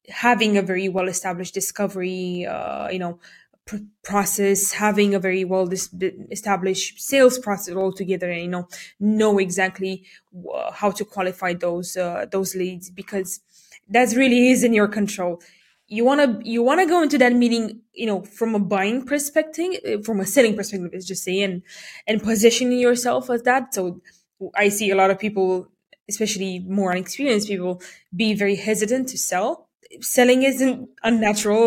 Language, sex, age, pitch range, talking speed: English, female, 20-39, 190-235 Hz, 165 wpm